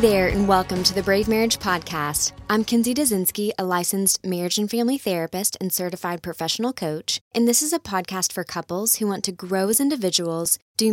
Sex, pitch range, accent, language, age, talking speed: female, 170-220 Hz, American, English, 20-39, 190 wpm